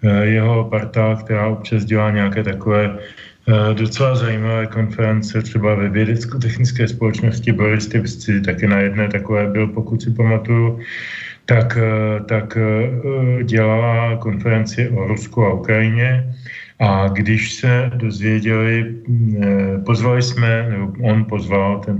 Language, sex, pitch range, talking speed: Slovak, male, 100-115 Hz, 120 wpm